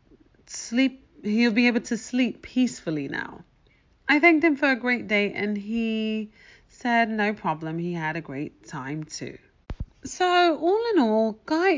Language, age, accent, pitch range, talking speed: English, 30-49, British, 170-255 Hz, 160 wpm